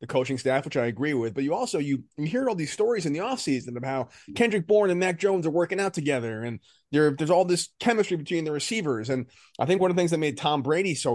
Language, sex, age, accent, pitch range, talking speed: English, male, 30-49, American, 125-155 Hz, 270 wpm